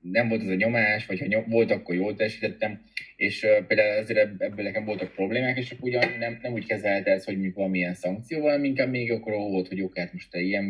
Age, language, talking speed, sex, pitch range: 20-39, Hungarian, 230 wpm, male, 90-110 Hz